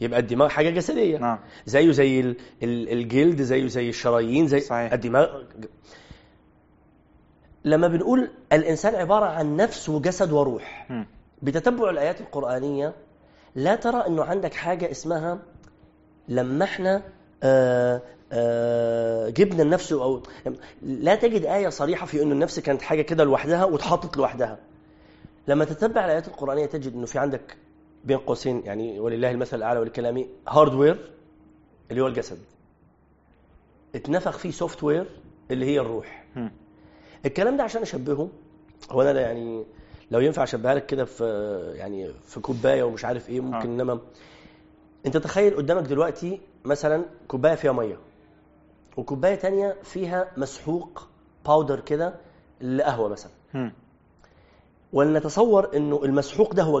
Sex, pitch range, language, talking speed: male, 120-170 Hz, Arabic, 120 wpm